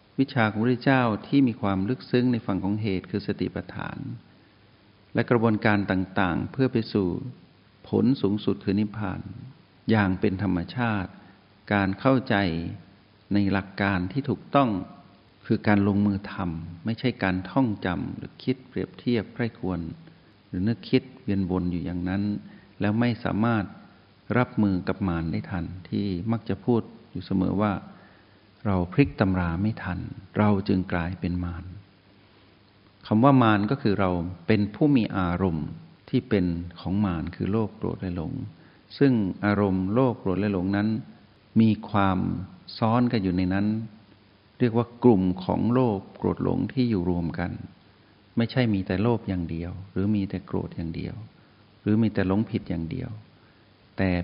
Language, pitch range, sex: Thai, 95-115 Hz, male